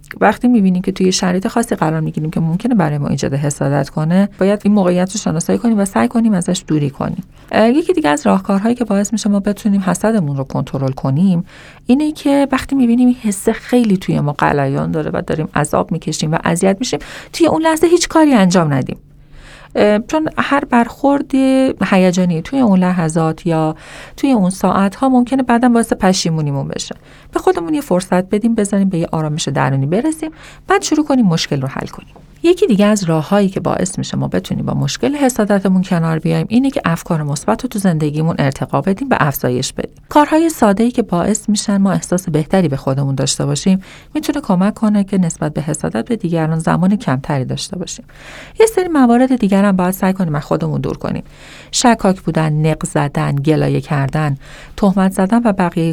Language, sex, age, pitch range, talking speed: Persian, female, 40-59, 160-235 Hz, 180 wpm